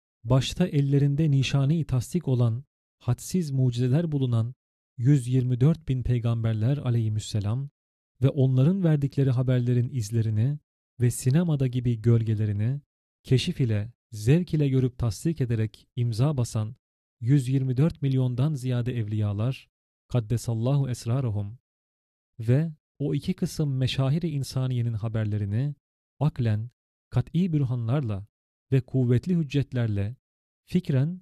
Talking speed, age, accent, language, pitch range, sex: 95 wpm, 40-59, native, Turkish, 115-140 Hz, male